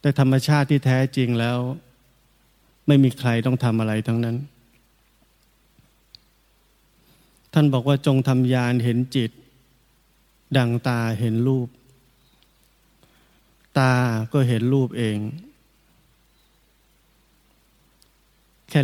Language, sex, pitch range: Thai, male, 120-140 Hz